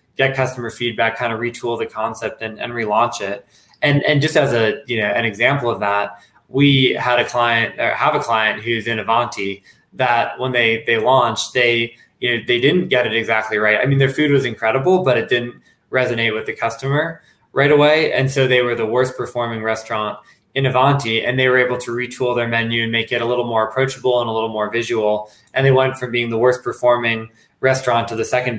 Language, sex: English, male